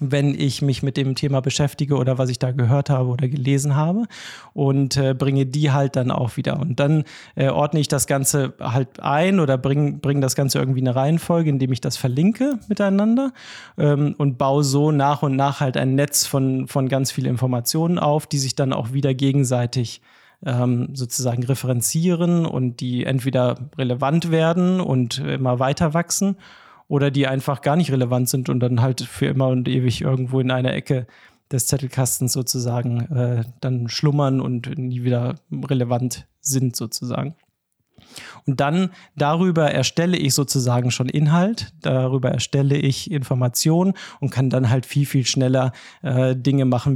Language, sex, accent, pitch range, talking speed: German, male, German, 125-145 Hz, 165 wpm